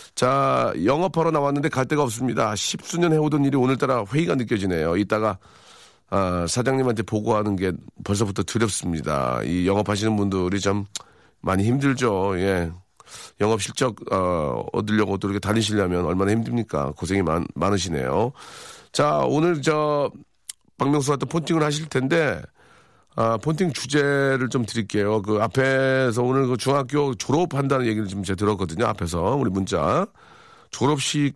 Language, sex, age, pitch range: Korean, male, 40-59, 100-135 Hz